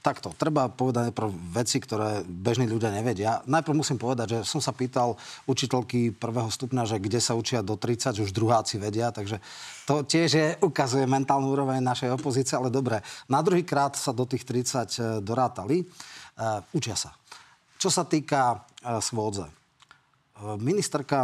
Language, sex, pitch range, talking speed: Slovak, male, 110-135 Hz, 160 wpm